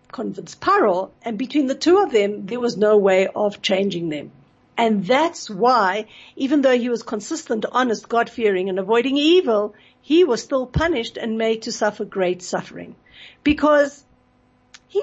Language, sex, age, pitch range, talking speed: English, female, 60-79, 205-260 Hz, 160 wpm